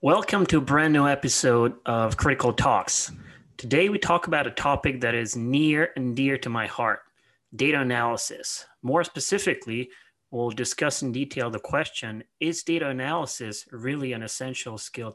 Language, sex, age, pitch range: English, male, 30-49, 120-150 Hz